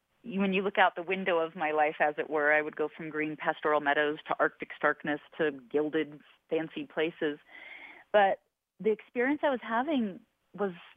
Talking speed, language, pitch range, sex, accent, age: 180 wpm, English, 145-180 Hz, female, American, 30-49